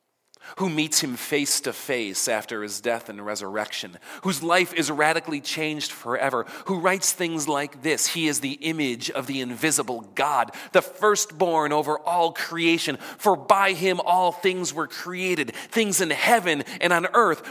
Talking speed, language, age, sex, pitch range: 165 wpm, English, 40-59, male, 140-185 Hz